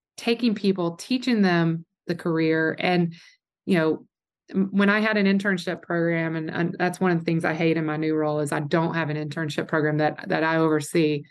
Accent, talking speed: American, 205 wpm